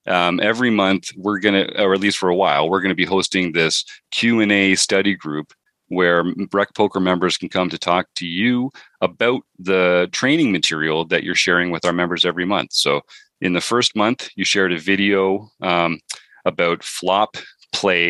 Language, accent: English, American